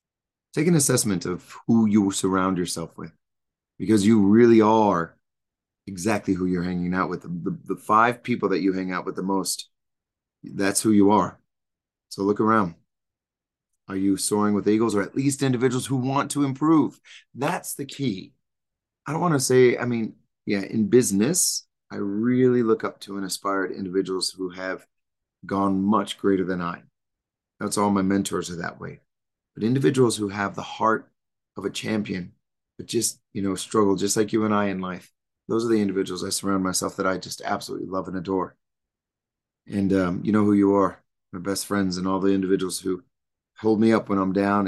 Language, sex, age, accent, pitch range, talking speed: English, male, 30-49, American, 95-110 Hz, 195 wpm